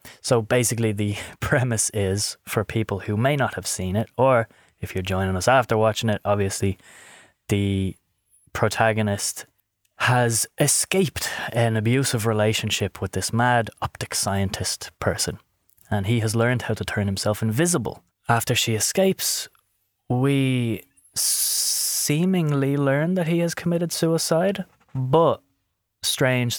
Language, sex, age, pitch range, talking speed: English, male, 20-39, 100-120 Hz, 130 wpm